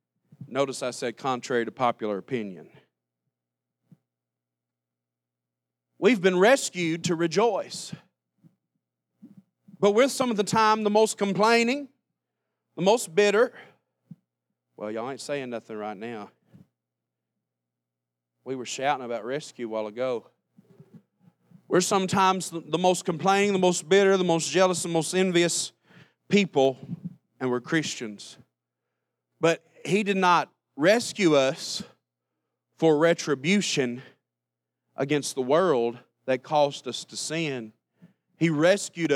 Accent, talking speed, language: American, 115 wpm, English